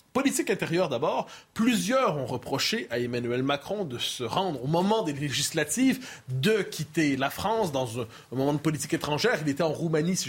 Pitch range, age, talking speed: 150-195 Hz, 30-49, 180 wpm